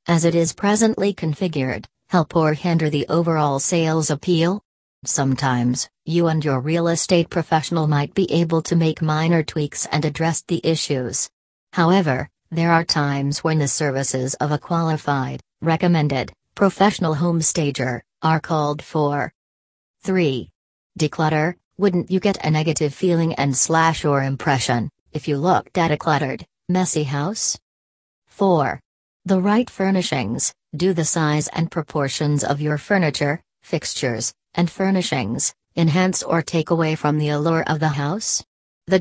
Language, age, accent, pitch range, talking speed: English, 40-59, American, 145-170 Hz, 145 wpm